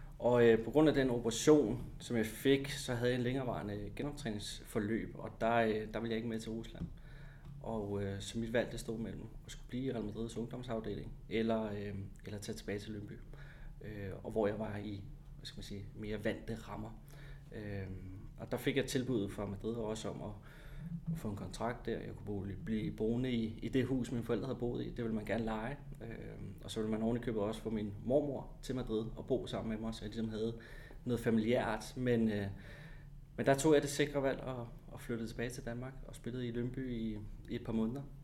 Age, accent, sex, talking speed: 30-49, native, male, 225 wpm